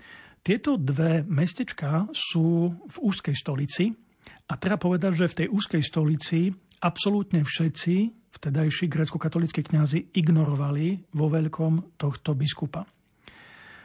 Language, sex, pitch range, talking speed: Slovak, male, 155-175 Hz, 110 wpm